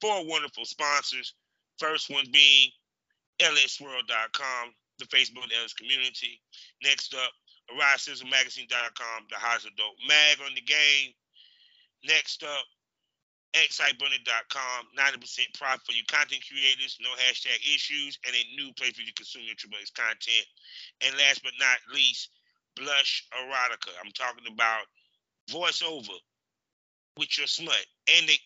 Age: 30-49